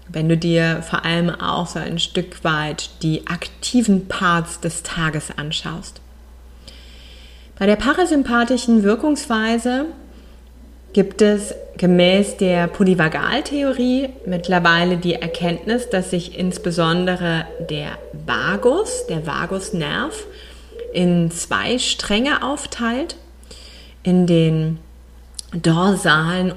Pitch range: 170-220 Hz